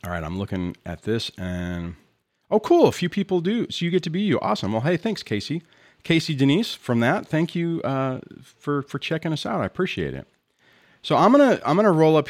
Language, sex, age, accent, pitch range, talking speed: English, male, 40-59, American, 100-155 Hz, 235 wpm